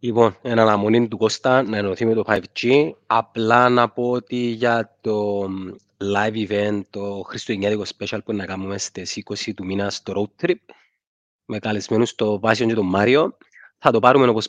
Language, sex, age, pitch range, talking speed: Greek, male, 30-49, 105-125 Hz, 175 wpm